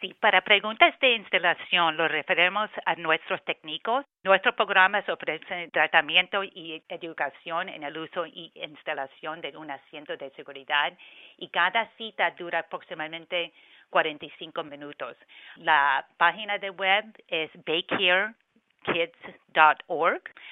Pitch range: 160-200 Hz